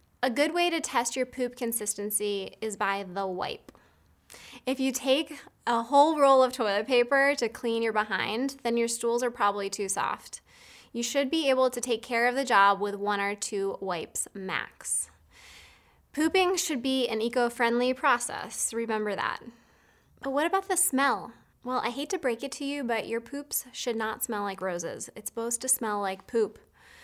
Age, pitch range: 20-39, 210-265 Hz